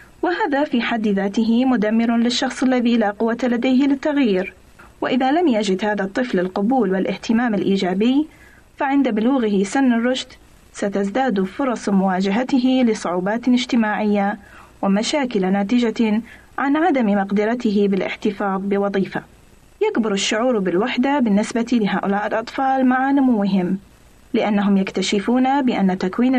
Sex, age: female, 30-49